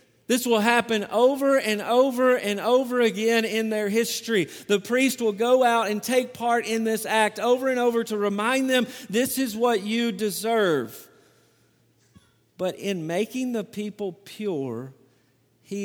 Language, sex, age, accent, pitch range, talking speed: English, male, 50-69, American, 170-235 Hz, 155 wpm